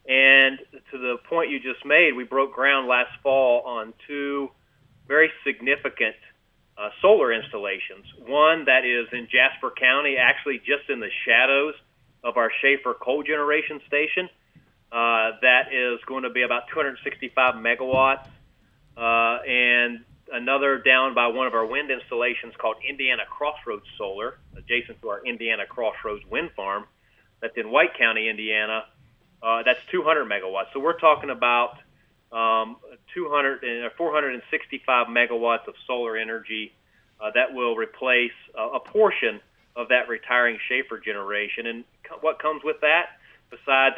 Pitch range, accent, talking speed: 115-135 Hz, American, 145 wpm